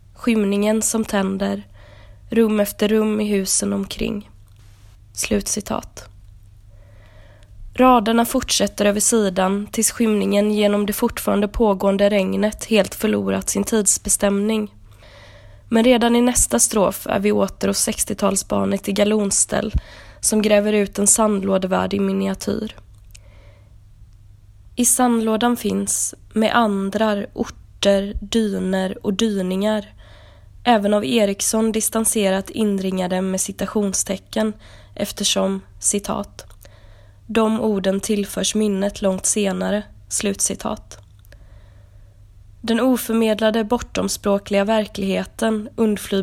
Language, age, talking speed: Swedish, 20-39, 95 wpm